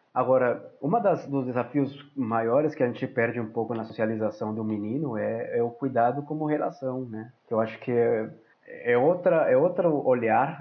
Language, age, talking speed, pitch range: Portuguese, 20-39, 175 wpm, 115-135 Hz